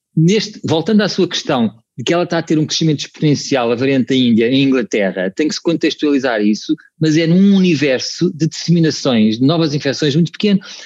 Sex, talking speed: male, 200 wpm